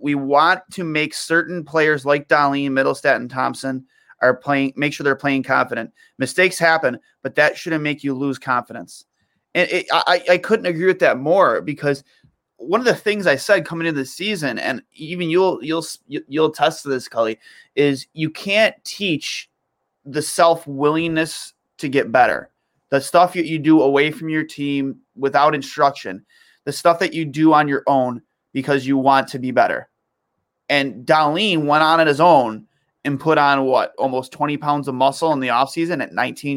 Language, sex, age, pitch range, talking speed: English, male, 30-49, 140-180 Hz, 185 wpm